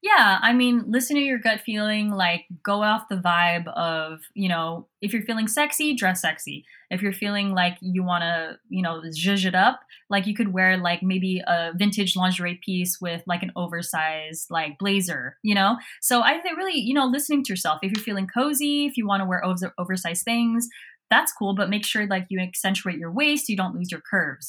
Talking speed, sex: 215 wpm, female